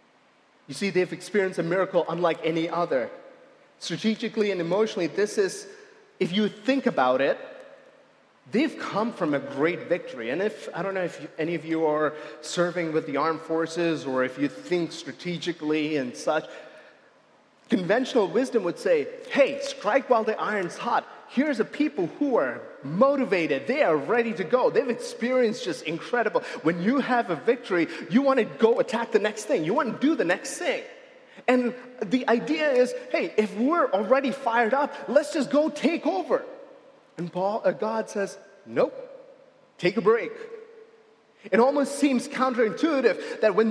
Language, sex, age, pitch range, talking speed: English, male, 30-49, 190-285 Hz, 165 wpm